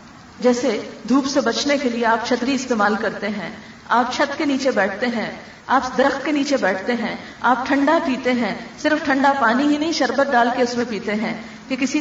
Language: Urdu